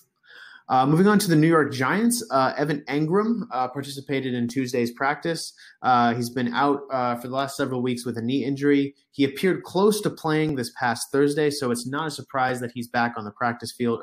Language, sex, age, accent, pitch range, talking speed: English, male, 30-49, American, 115-140 Hz, 215 wpm